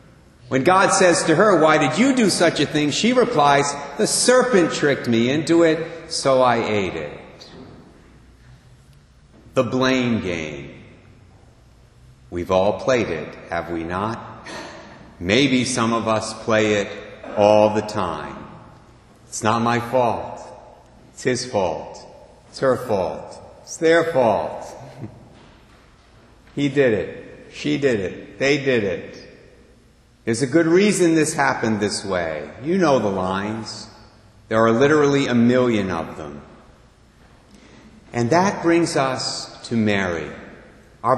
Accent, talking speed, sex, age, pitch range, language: American, 135 wpm, male, 50-69, 115-170 Hz, English